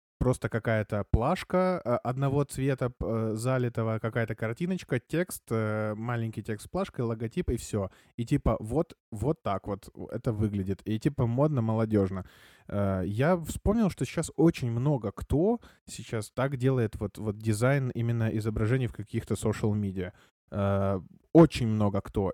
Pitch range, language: 110-130 Hz, Russian